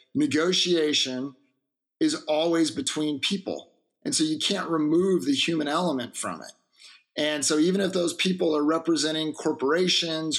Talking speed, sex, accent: 140 wpm, male, American